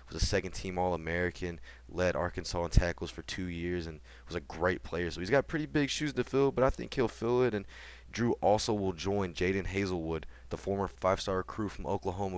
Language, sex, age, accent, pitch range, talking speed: English, male, 20-39, American, 80-95 Hz, 215 wpm